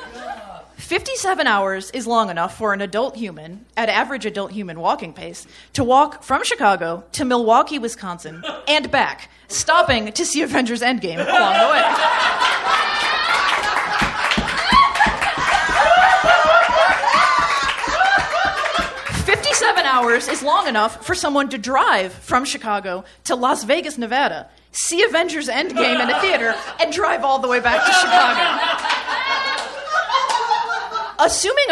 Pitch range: 210-325 Hz